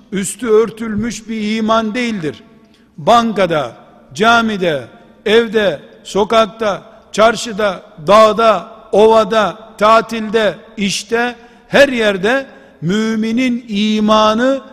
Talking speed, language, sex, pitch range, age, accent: 75 wpm, Turkish, male, 205-230 Hz, 60-79, native